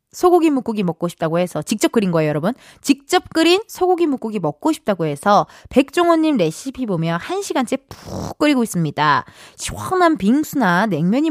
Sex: female